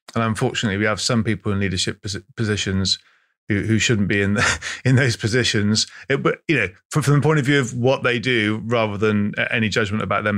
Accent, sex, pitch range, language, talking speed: British, male, 105-130 Hz, English, 215 wpm